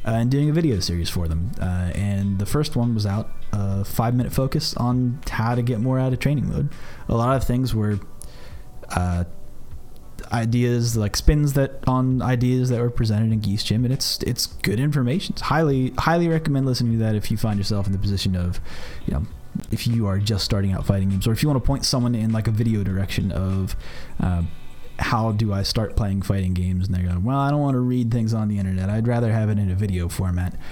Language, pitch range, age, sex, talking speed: English, 95-125 Hz, 30-49, male, 230 wpm